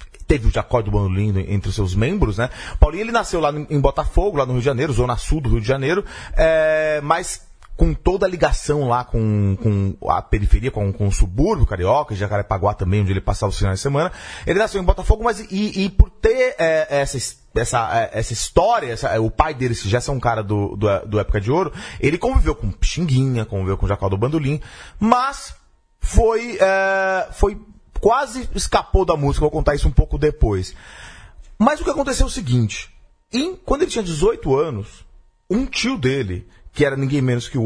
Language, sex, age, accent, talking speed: Portuguese, male, 30-49, Brazilian, 205 wpm